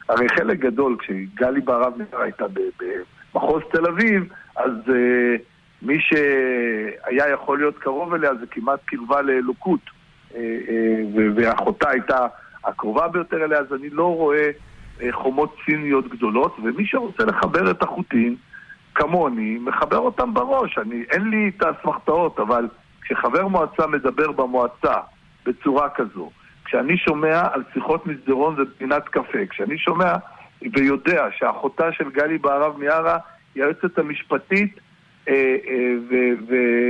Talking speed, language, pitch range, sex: 130 wpm, Hebrew, 125-160 Hz, male